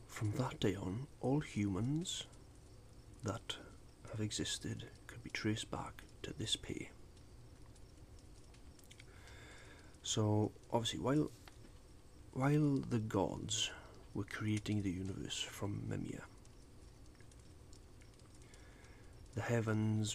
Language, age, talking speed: English, 40-59, 90 wpm